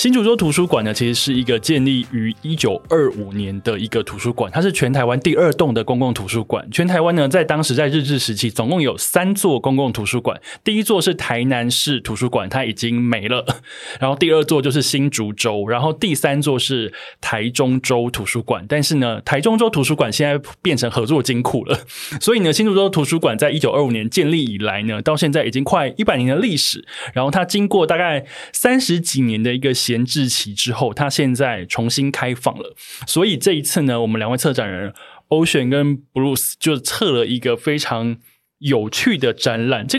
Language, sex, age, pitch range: Chinese, male, 20-39, 120-160 Hz